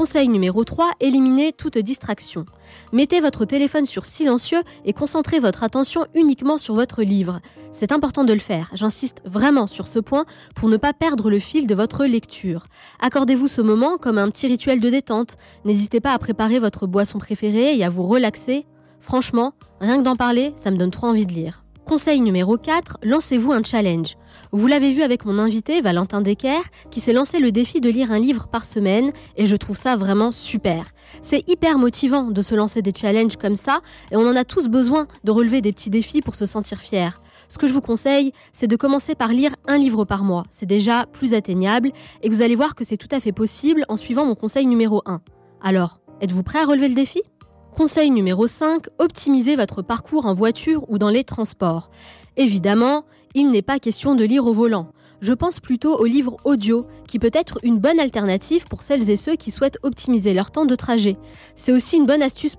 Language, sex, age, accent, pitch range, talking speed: French, female, 20-39, French, 210-280 Hz, 205 wpm